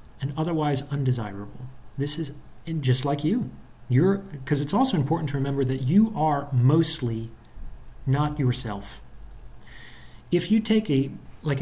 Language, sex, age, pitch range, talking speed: English, male, 30-49, 125-150 Hz, 130 wpm